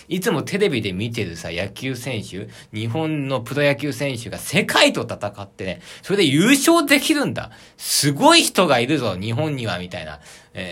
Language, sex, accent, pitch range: Japanese, male, native, 105-165 Hz